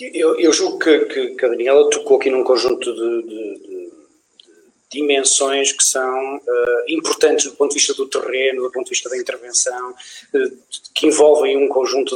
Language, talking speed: Portuguese, 175 wpm